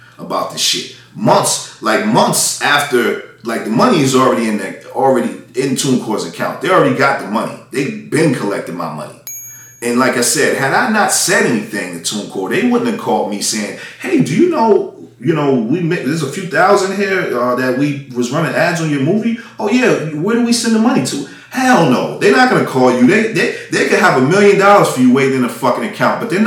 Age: 30-49